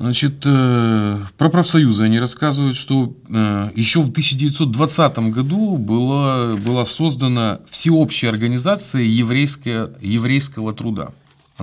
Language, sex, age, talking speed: Russian, male, 30-49, 105 wpm